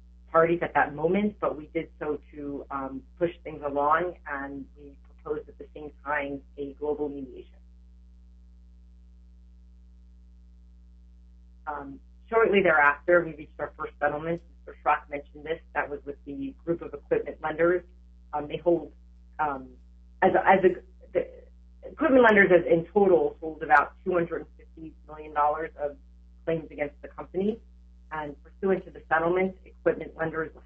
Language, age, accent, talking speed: English, 40-59, American, 145 wpm